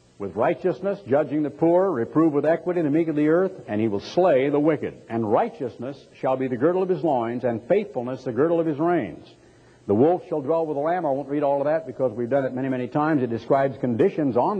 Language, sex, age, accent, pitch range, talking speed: English, male, 60-79, American, 130-185 Hz, 245 wpm